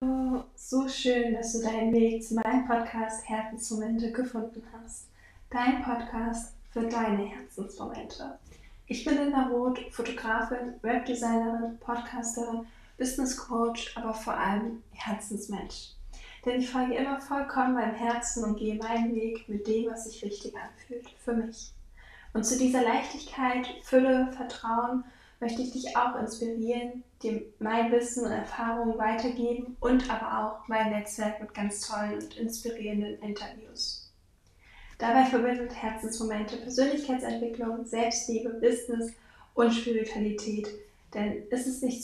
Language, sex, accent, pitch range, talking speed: German, female, German, 225-245 Hz, 125 wpm